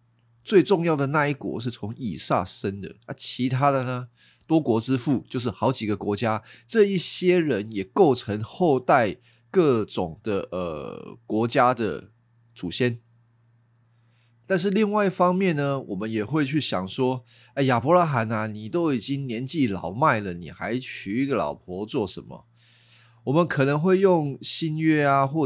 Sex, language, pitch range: male, Chinese, 115-140 Hz